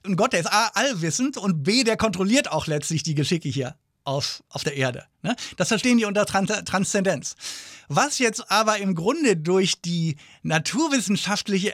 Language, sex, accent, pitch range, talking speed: English, male, German, 155-210 Hz, 175 wpm